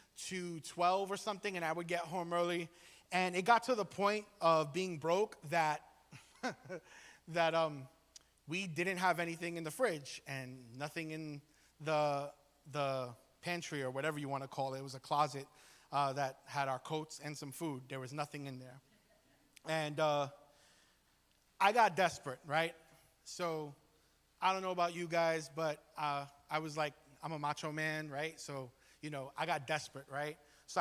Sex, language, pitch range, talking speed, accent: male, English, 145-170 Hz, 175 wpm, American